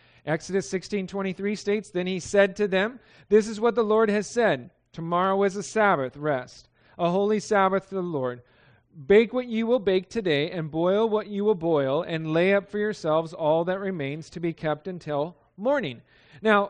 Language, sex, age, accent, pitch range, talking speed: English, male, 40-59, American, 165-215 Hz, 195 wpm